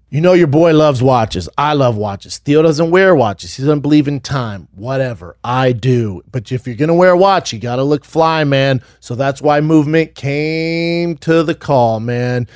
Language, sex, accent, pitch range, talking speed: English, male, American, 130-160 Hz, 210 wpm